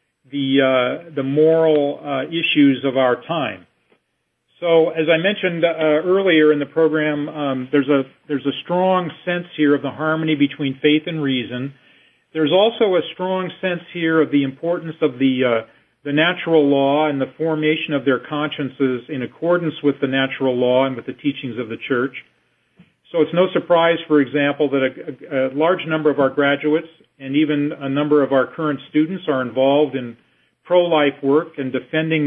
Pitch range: 135-165 Hz